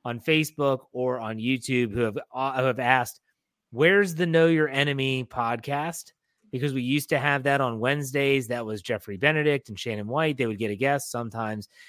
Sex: male